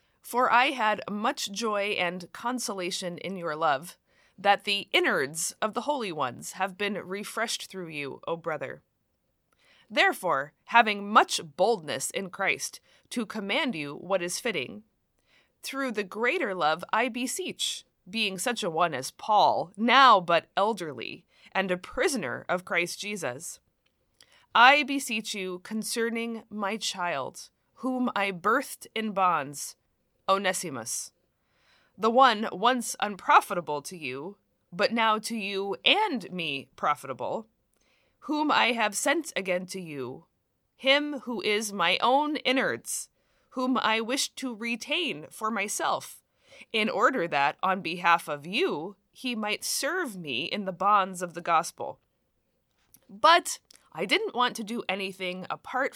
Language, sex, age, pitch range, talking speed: English, female, 20-39, 185-245 Hz, 135 wpm